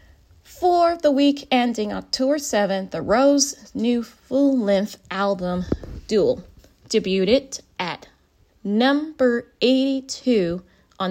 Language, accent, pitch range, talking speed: English, American, 195-260 Hz, 90 wpm